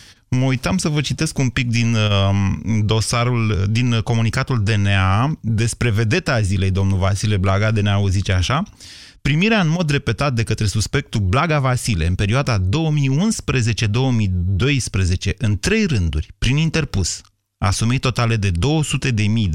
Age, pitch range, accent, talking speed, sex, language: 30-49, 100-130 Hz, native, 135 wpm, male, Romanian